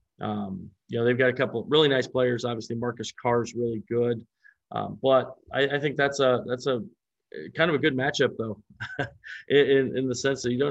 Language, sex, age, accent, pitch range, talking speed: English, male, 40-59, American, 115-135 Hz, 215 wpm